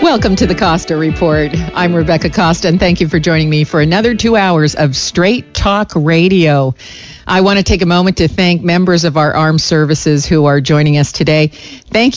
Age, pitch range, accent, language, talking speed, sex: 50-69, 150-180 Hz, American, English, 200 wpm, female